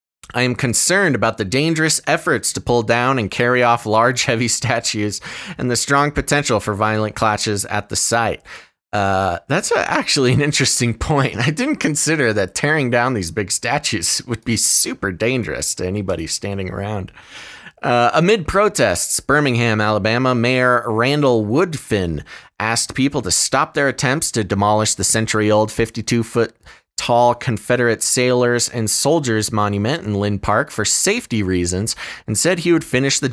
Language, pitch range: English, 105-145 Hz